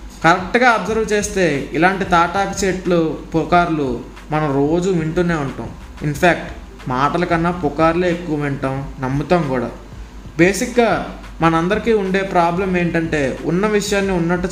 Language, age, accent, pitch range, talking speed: Telugu, 20-39, native, 140-185 Hz, 110 wpm